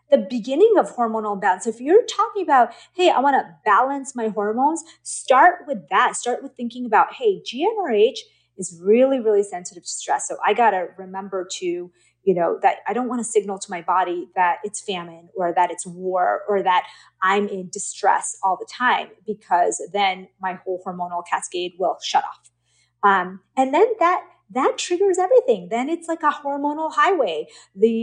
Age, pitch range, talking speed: 30-49, 190-295 Hz, 185 wpm